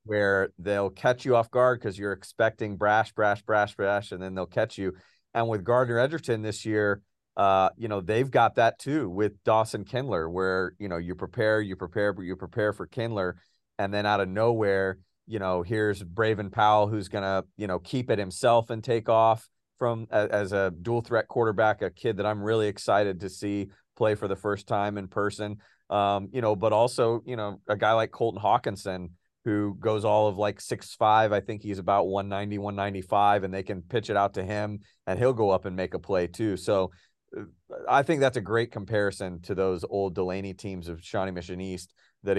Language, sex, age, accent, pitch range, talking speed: English, male, 40-59, American, 95-110 Hz, 205 wpm